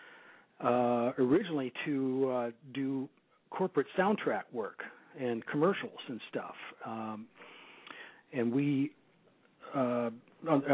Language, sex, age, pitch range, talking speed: English, male, 50-69, 115-130 Hz, 95 wpm